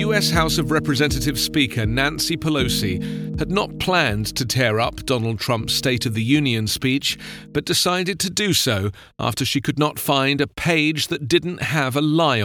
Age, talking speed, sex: 40-59, 180 wpm, male